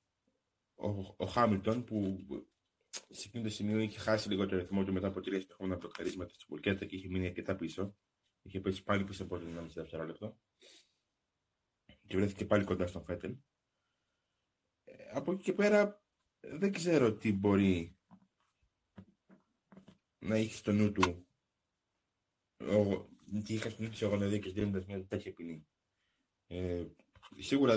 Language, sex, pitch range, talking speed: Greek, male, 95-115 Hz, 155 wpm